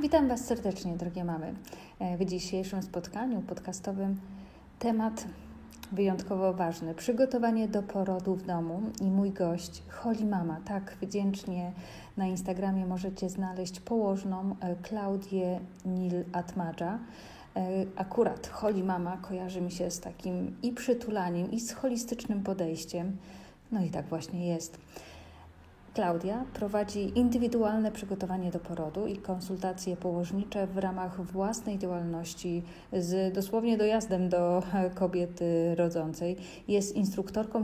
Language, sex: Polish, female